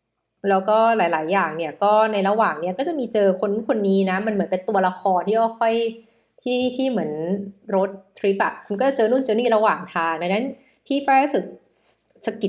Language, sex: Thai, female